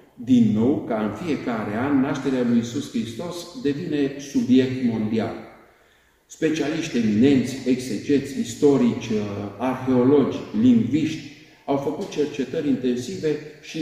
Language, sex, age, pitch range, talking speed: Romanian, male, 50-69, 125-150 Hz, 105 wpm